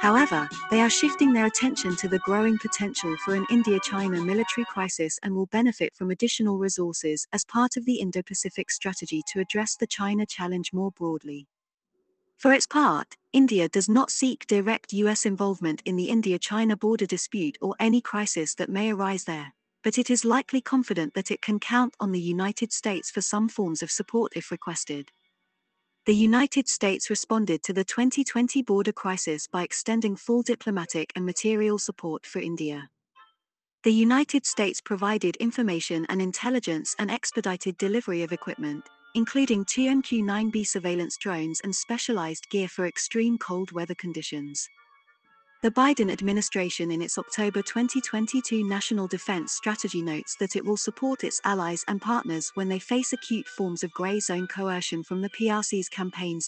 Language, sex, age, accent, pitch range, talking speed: English, female, 40-59, British, 180-230 Hz, 160 wpm